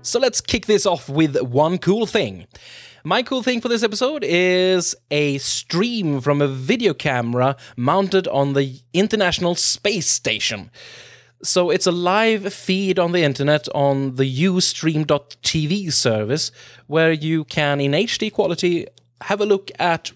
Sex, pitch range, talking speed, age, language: male, 125-170 Hz, 150 wpm, 20-39, English